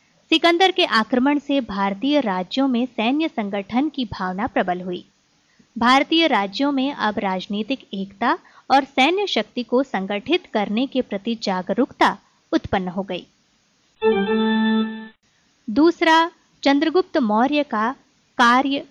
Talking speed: 115 wpm